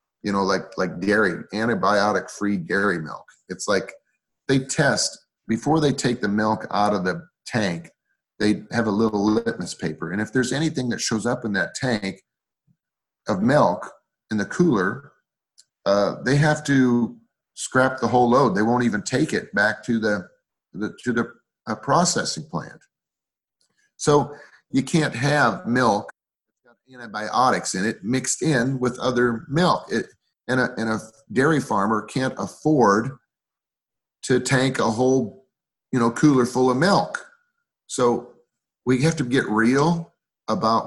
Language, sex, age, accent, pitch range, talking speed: English, male, 40-59, American, 105-130 Hz, 150 wpm